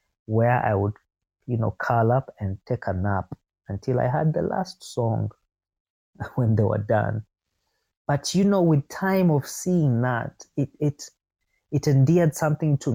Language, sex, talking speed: English, male, 160 wpm